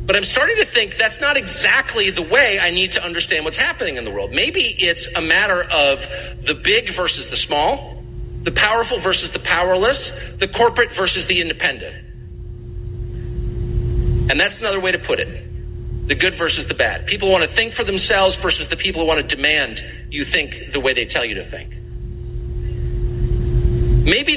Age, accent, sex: 40-59, American, male